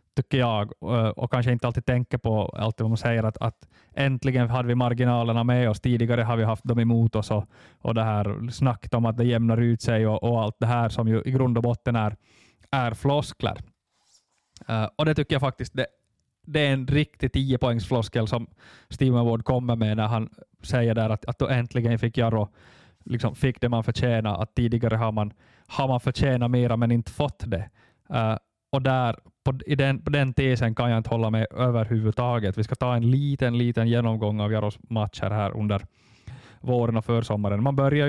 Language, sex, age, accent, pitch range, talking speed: Swedish, male, 20-39, Finnish, 110-125 Hz, 200 wpm